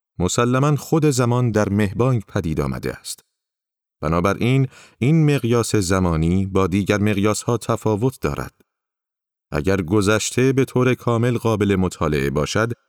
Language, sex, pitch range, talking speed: Persian, male, 90-120 Hz, 120 wpm